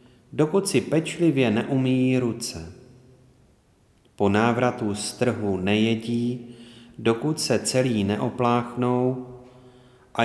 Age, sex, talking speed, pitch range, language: 40-59, male, 90 wpm, 105-130 Hz, Czech